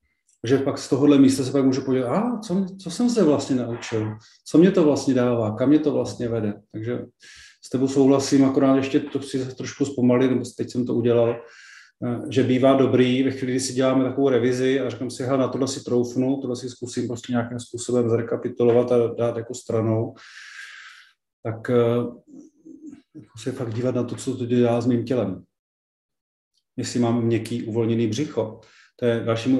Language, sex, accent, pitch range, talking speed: Czech, male, native, 120-135 Hz, 185 wpm